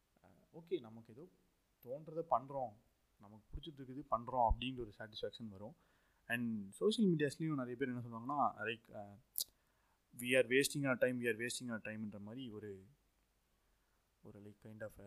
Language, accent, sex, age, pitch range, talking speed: Tamil, native, male, 20-39, 105-125 Hz, 140 wpm